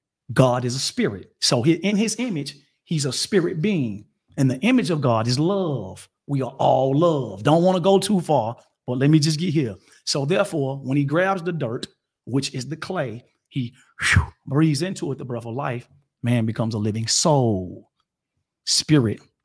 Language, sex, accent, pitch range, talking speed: English, male, American, 115-150 Hz, 185 wpm